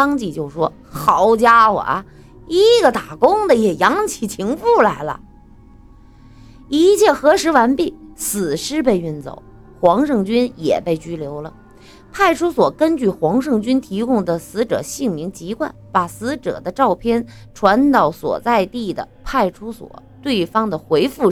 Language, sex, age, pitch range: Chinese, female, 20-39, 180-275 Hz